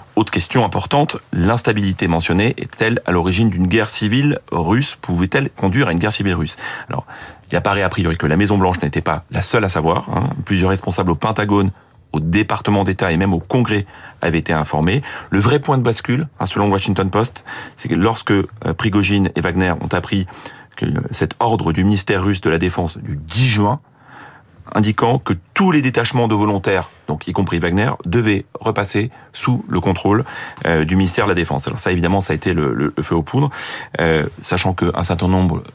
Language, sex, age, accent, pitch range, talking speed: French, male, 30-49, French, 85-105 Hz, 195 wpm